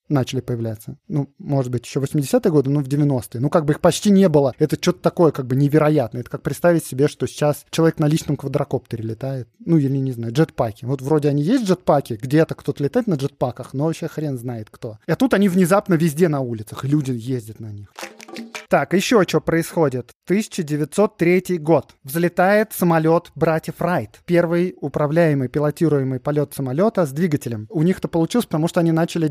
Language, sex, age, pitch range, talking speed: Russian, male, 20-39, 140-180 Hz, 190 wpm